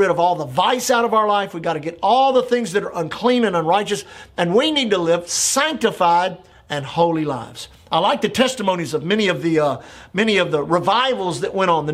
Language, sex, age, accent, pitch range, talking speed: English, male, 50-69, American, 170-245 Hz, 230 wpm